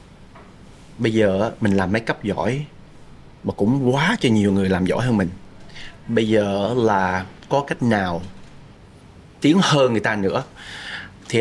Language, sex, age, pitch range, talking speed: Vietnamese, male, 20-39, 100-135 Hz, 155 wpm